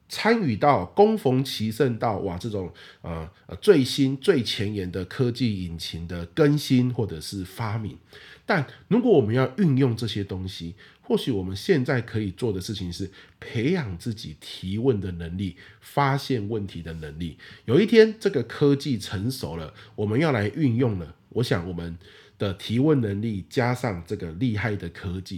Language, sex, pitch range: Chinese, male, 95-130 Hz